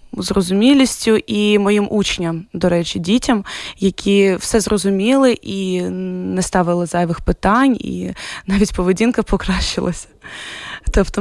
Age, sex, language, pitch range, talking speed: 20-39, female, Ukrainian, 180-210 Hz, 105 wpm